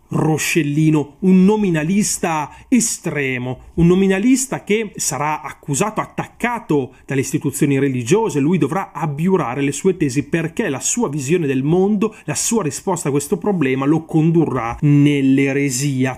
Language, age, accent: Italian, 30-49, native